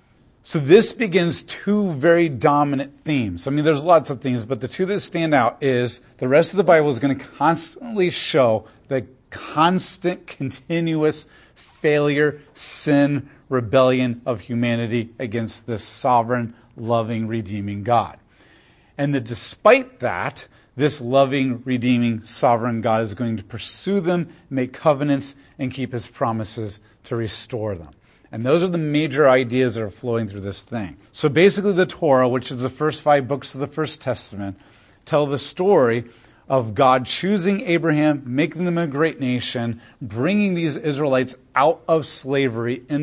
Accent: American